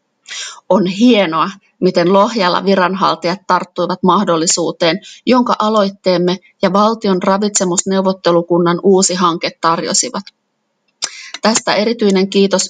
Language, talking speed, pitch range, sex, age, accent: Finnish, 85 wpm, 180-210 Hz, female, 30-49, native